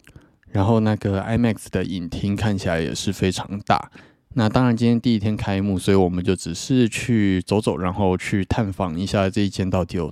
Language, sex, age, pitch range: Chinese, male, 20-39, 90-110 Hz